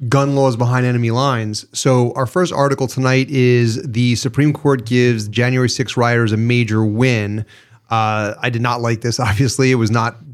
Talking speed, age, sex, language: 180 wpm, 30-49, male, English